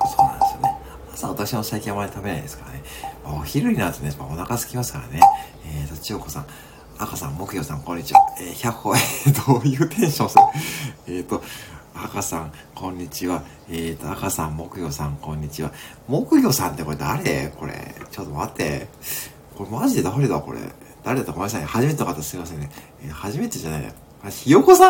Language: Japanese